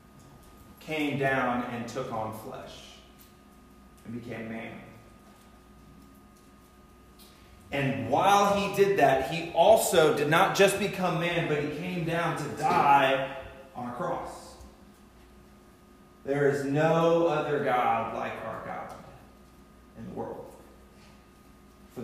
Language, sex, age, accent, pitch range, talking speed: English, male, 30-49, American, 115-155 Hz, 115 wpm